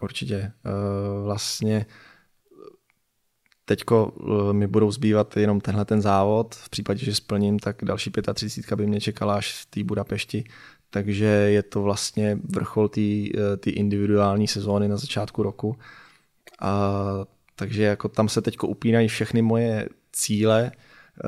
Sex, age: male, 20-39